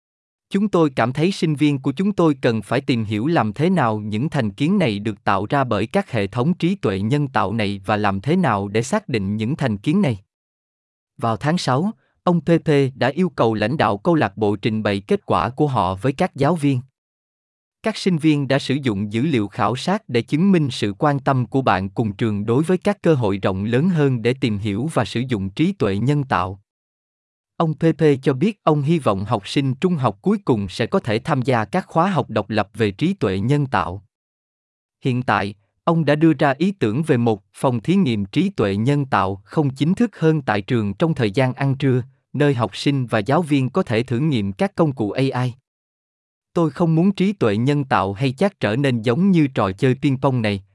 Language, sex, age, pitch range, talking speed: Vietnamese, male, 20-39, 110-160 Hz, 225 wpm